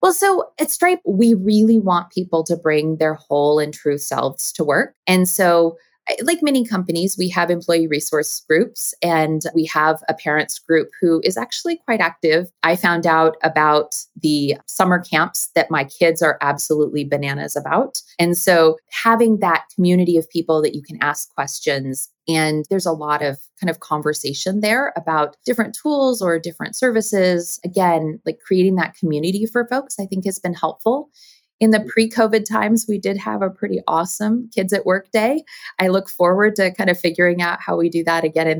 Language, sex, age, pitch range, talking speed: English, female, 20-39, 155-200 Hz, 185 wpm